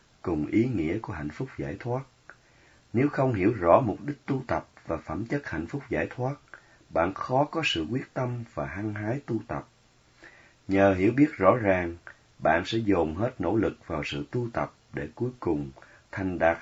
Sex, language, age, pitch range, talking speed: male, Vietnamese, 30-49, 95-125 Hz, 195 wpm